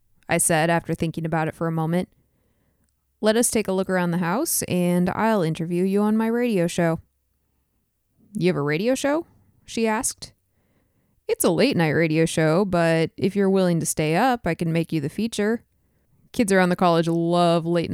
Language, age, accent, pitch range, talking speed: English, 20-39, American, 150-185 Hz, 190 wpm